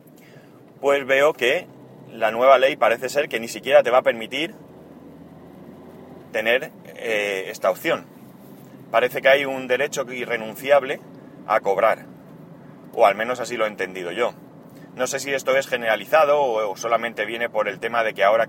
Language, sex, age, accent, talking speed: Spanish, male, 30-49, Spanish, 160 wpm